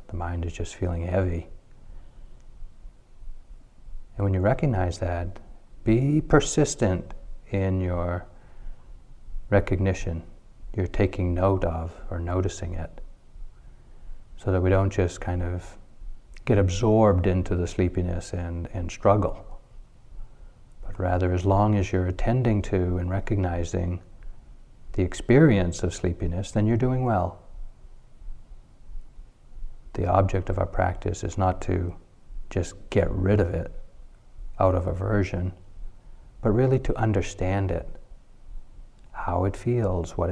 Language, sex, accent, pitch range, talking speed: English, male, American, 90-100 Hz, 120 wpm